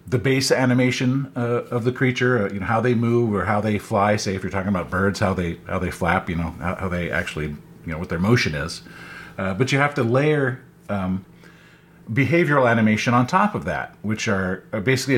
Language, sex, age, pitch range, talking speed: English, male, 40-59, 95-130 Hz, 220 wpm